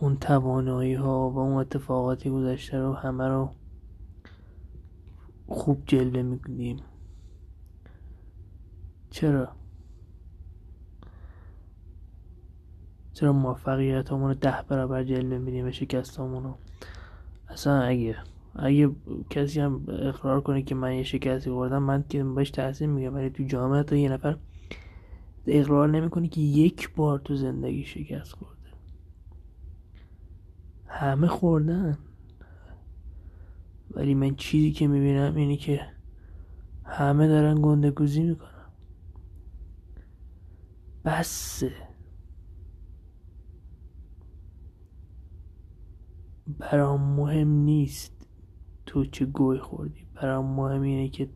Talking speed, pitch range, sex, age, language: 95 wpm, 85-135 Hz, male, 20-39, Persian